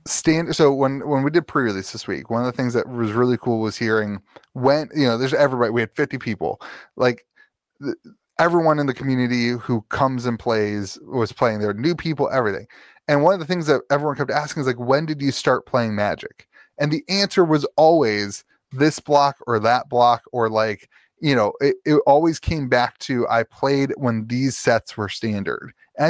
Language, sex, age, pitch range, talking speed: English, male, 30-49, 115-150 Hz, 200 wpm